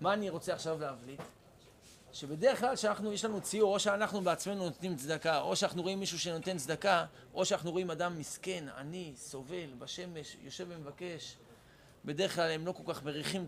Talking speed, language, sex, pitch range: 175 wpm, Hebrew, male, 150-200 Hz